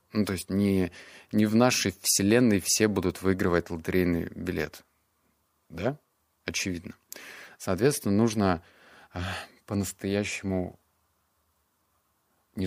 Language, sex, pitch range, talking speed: Russian, male, 90-110 Hz, 95 wpm